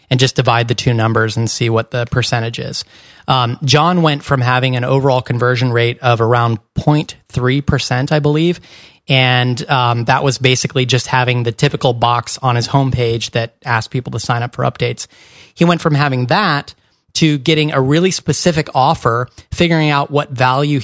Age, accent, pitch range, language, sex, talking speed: 30-49, American, 125-145 Hz, English, male, 180 wpm